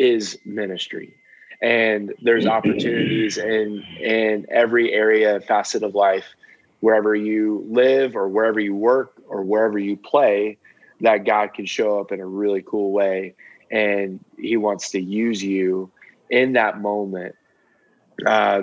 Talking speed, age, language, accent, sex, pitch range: 140 wpm, 20-39, English, American, male, 100-115 Hz